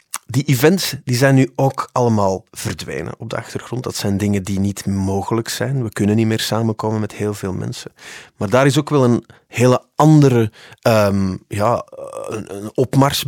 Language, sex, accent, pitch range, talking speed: Dutch, male, Dutch, 105-120 Hz, 160 wpm